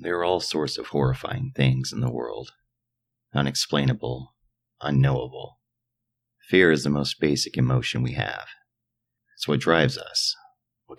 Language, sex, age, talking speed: English, male, 40-59, 135 wpm